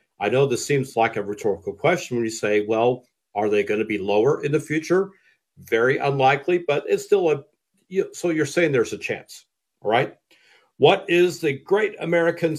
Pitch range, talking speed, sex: 115-155 Hz, 185 wpm, male